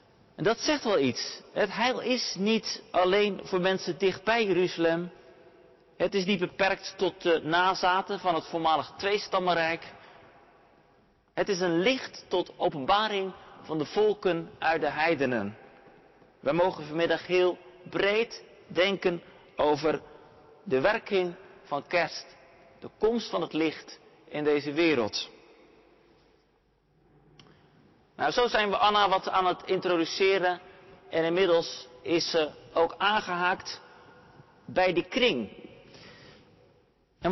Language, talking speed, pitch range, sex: Dutch, 120 wpm, 170-220 Hz, male